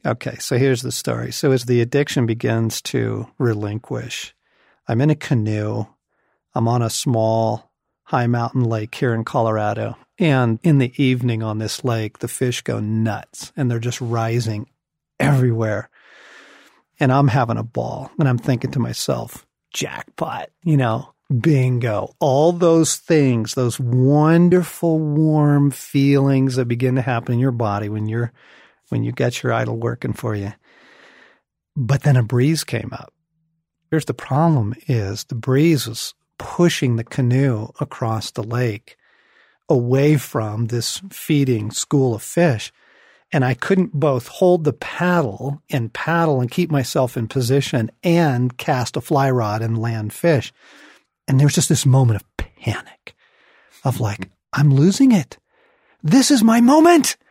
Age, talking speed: 40-59, 150 wpm